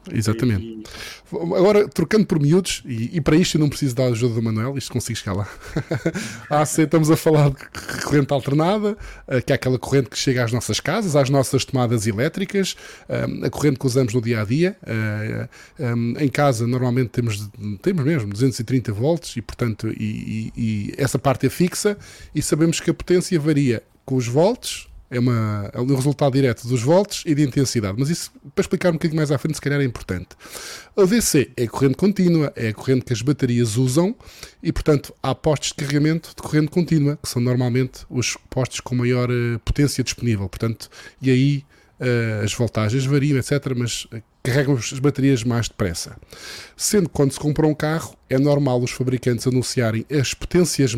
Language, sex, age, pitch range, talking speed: Portuguese, male, 20-39, 120-150 Hz, 185 wpm